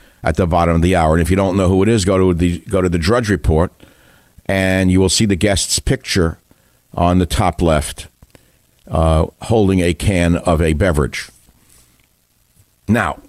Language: English